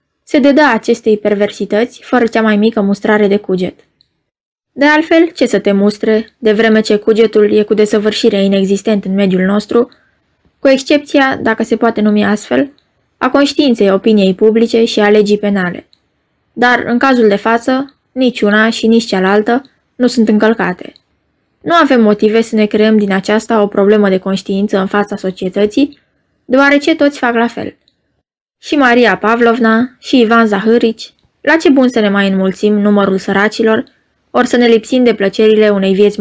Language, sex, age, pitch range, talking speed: Romanian, female, 20-39, 205-245 Hz, 160 wpm